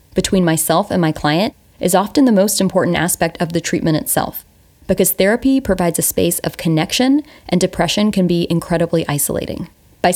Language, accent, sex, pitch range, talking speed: English, American, female, 165-200 Hz, 170 wpm